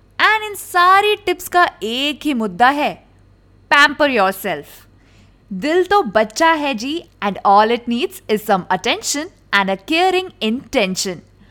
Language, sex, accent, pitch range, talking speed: Hindi, female, native, 205-340 Hz, 95 wpm